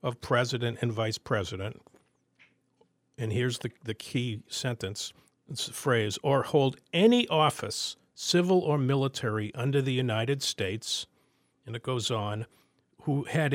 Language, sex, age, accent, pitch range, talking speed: English, male, 50-69, American, 115-150 Hz, 135 wpm